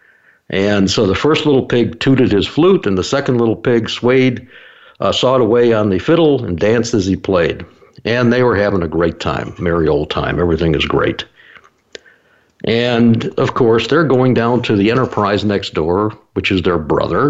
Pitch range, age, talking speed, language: 100-125 Hz, 60-79, 185 wpm, English